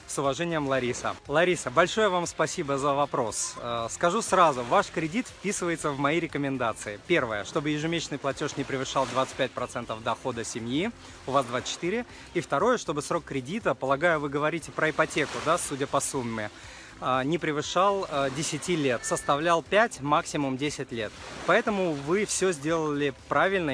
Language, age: Russian, 30-49